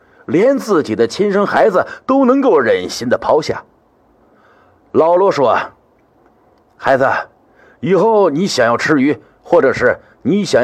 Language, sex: Chinese, male